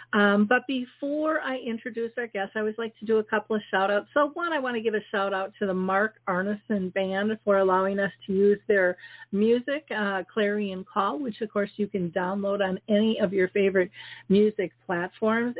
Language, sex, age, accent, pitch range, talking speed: English, female, 50-69, American, 195-230 Hz, 210 wpm